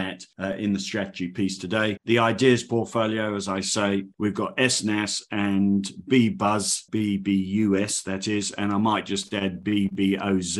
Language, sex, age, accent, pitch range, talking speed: English, male, 50-69, British, 95-115 Hz, 155 wpm